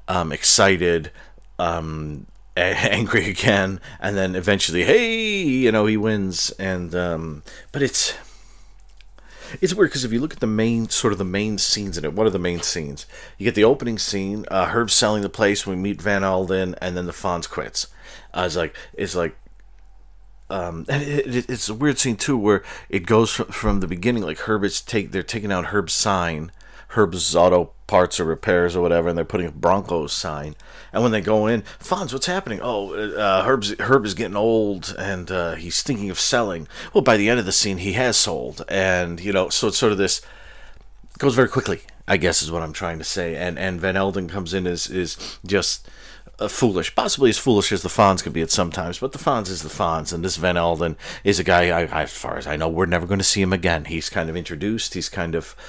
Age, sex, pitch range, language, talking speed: 40-59, male, 85-110 Hz, English, 225 wpm